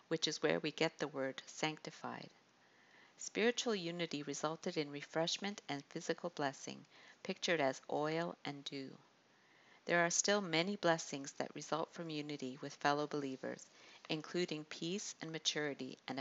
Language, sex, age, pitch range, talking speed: English, female, 50-69, 145-175 Hz, 140 wpm